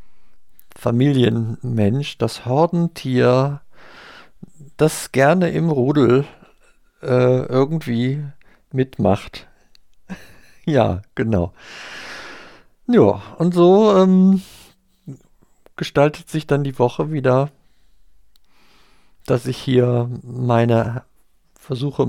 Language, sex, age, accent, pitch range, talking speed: German, male, 50-69, German, 115-150 Hz, 75 wpm